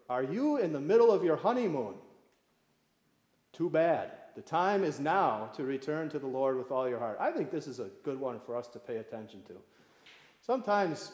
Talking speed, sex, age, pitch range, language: 200 wpm, male, 40-59, 135-190 Hz, English